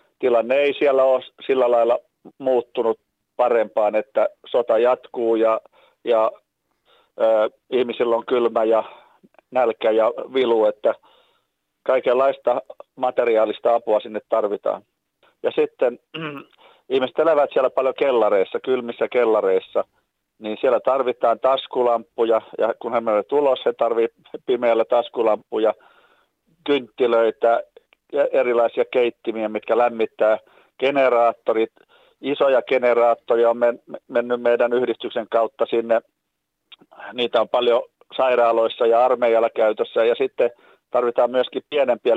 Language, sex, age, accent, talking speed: Finnish, male, 40-59, native, 110 wpm